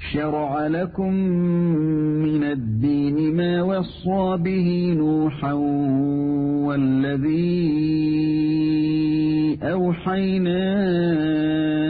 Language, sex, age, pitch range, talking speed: English, male, 50-69, 150-175 Hz, 50 wpm